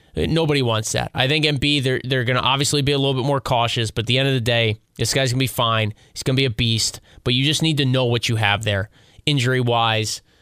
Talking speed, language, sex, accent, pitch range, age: 270 wpm, English, male, American, 115-165 Hz, 20-39